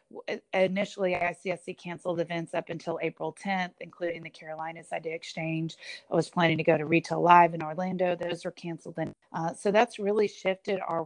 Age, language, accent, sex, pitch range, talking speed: 30-49, English, American, female, 165-185 Hz, 185 wpm